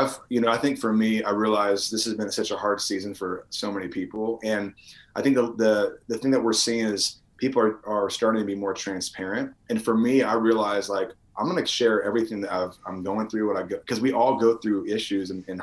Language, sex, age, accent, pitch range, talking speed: English, male, 30-49, American, 100-120 Hz, 245 wpm